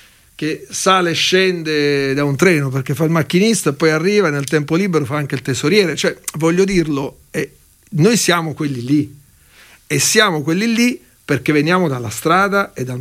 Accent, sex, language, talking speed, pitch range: native, male, Italian, 175 wpm, 135-175 Hz